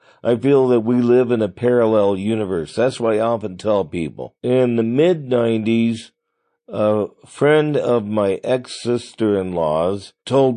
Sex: male